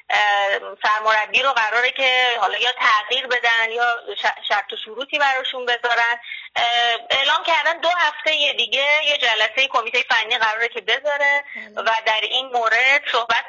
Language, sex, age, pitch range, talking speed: Persian, female, 20-39, 225-285 Hz, 140 wpm